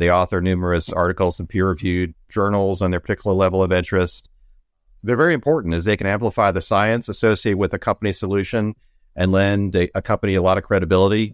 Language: English